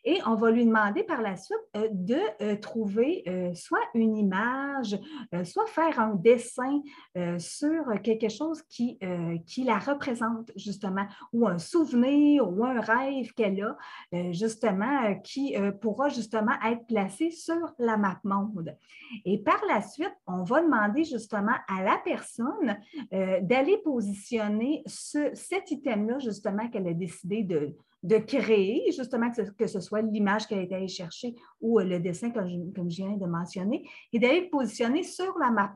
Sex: female